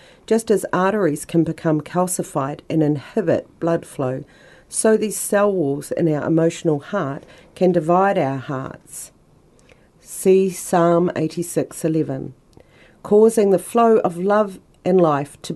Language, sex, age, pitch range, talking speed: Bulgarian, female, 40-59, 155-190 Hz, 125 wpm